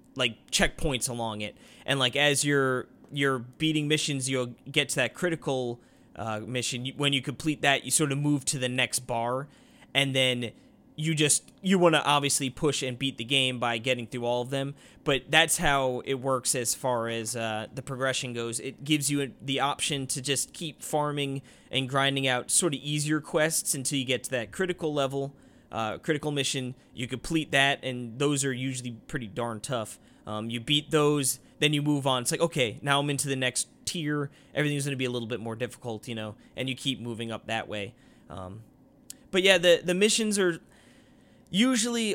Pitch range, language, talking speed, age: 125-150 Hz, English, 200 wpm, 20-39